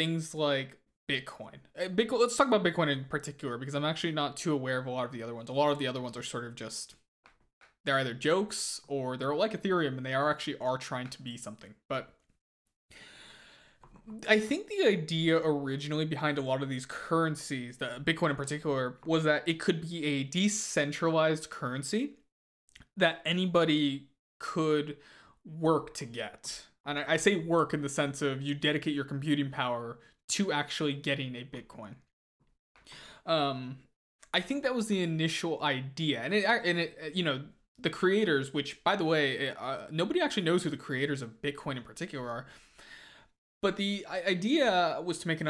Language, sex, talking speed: English, male, 180 wpm